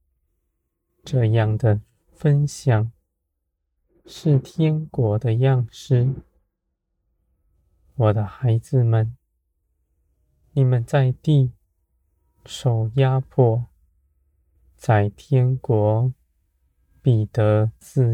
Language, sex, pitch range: Chinese, male, 80-125 Hz